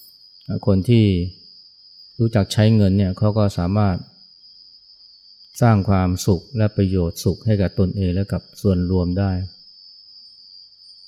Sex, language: male, Thai